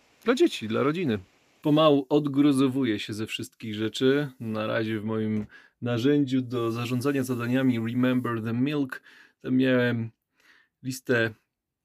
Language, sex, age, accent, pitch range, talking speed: Polish, male, 20-39, native, 115-145 Hz, 120 wpm